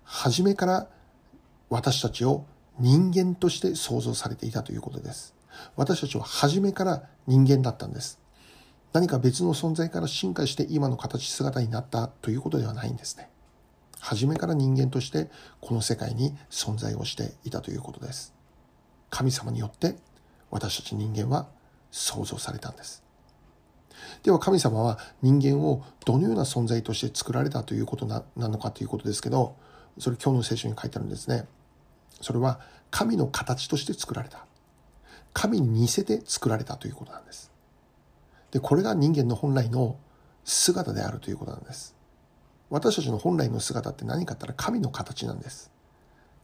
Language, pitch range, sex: Japanese, 115-145 Hz, male